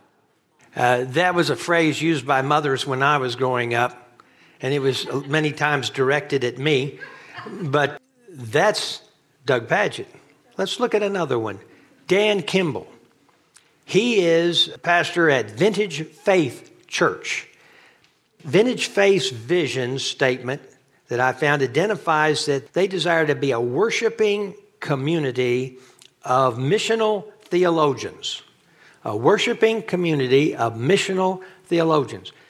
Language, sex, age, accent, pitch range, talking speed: English, male, 60-79, American, 140-220 Hz, 120 wpm